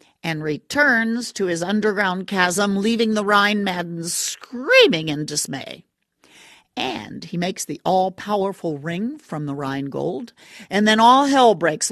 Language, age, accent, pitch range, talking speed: English, 50-69, American, 165-230 Hz, 140 wpm